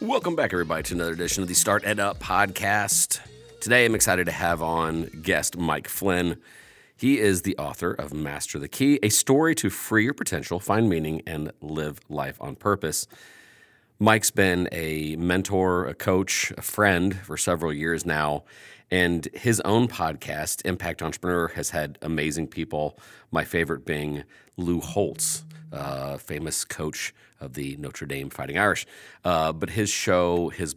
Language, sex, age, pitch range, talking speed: English, male, 40-59, 75-95 Hz, 160 wpm